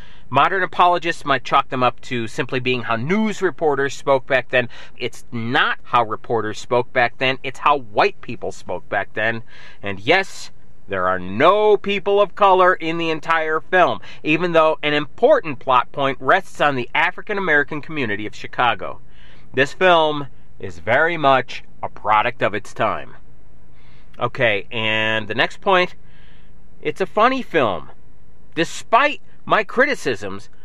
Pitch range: 125-185 Hz